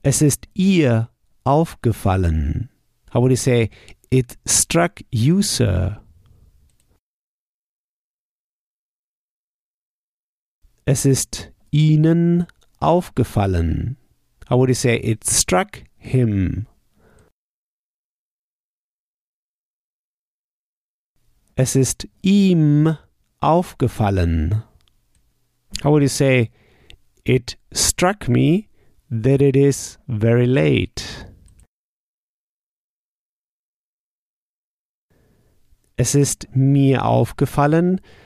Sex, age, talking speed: male, 50-69, 65 wpm